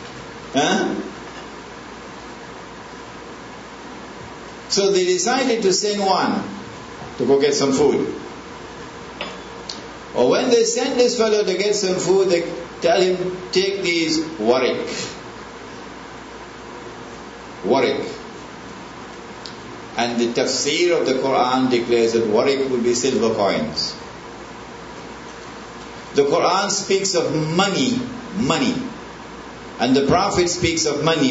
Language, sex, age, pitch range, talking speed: English, male, 60-79, 160-220 Hz, 100 wpm